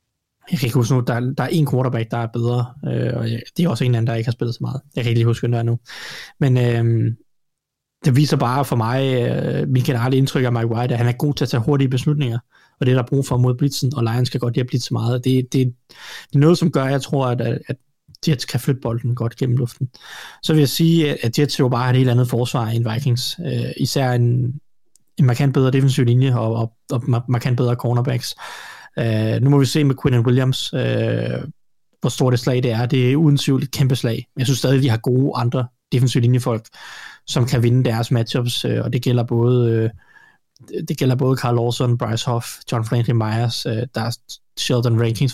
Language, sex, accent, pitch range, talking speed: Danish, male, native, 120-135 Hz, 240 wpm